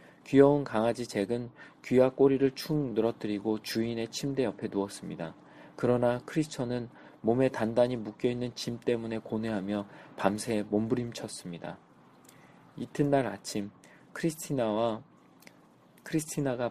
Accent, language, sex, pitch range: native, Korean, male, 105-130 Hz